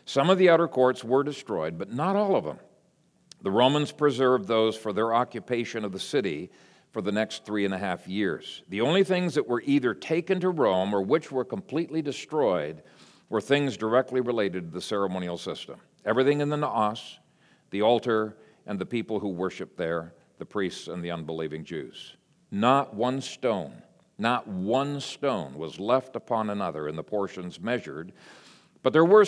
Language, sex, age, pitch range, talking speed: English, male, 50-69, 100-145 Hz, 180 wpm